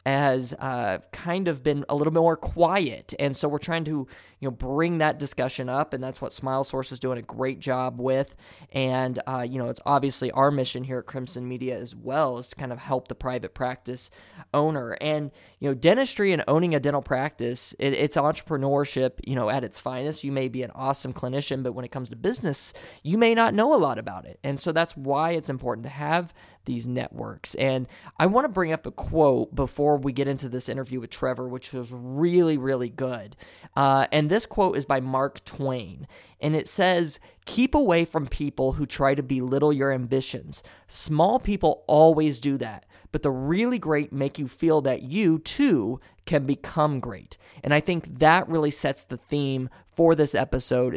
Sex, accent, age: male, American, 20-39